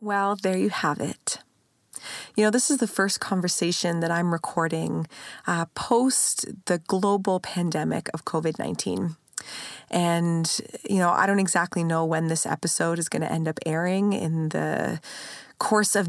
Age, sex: 20-39, female